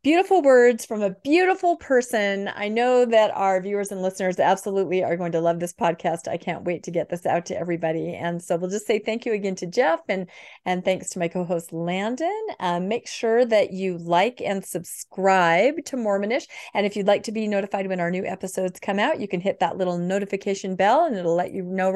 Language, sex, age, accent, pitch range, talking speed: English, female, 40-59, American, 185-250 Hz, 225 wpm